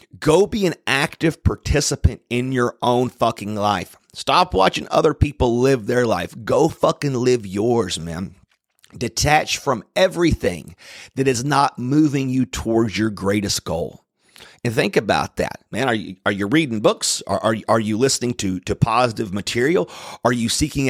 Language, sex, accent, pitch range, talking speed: English, male, American, 110-155 Hz, 165 wpm